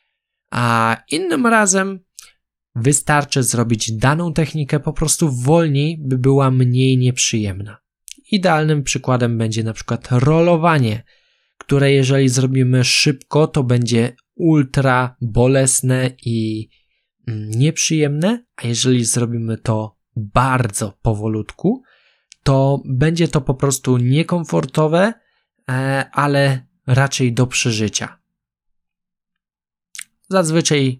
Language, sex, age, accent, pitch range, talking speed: Polish, male, 20-39, native, 120-150 Hz, 90 wpm